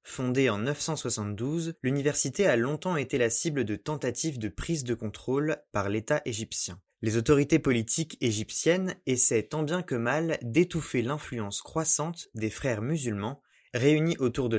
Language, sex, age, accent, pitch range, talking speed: French, male, 20-39, French, 120-155 Hz, 150 wpm